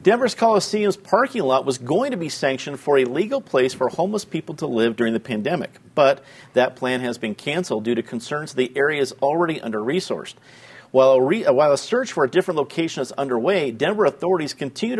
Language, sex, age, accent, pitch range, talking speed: English, male, 50-69, American, 115-150 Hz, 190 wpm